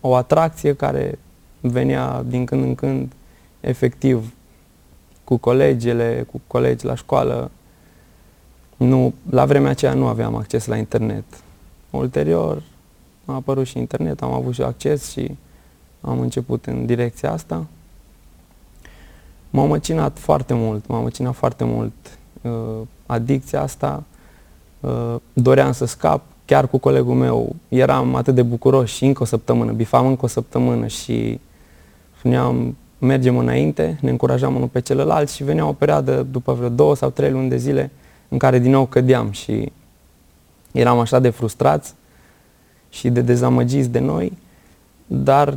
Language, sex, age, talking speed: Romanian, male, 20-39, 140 wpm